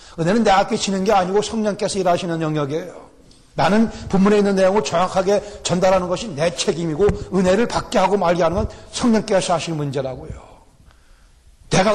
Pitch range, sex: 140-200 Hz, male